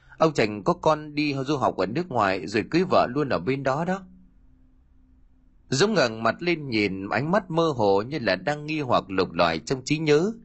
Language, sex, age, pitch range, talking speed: Vietnamese, male, 30-49, 95-155 Hz, 210 wpm